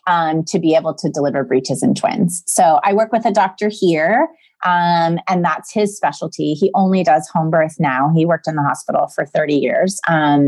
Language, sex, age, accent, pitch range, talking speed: English, female, 30-49, American, 150-215 Hz, 205 wpm